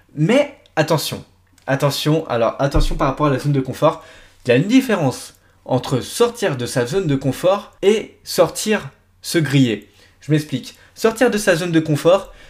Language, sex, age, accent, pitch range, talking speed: French, male, 20-39, French, 135-190 Hz, 175 wpm